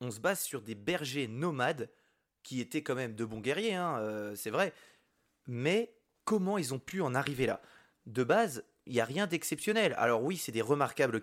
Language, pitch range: French, 120-165 Hz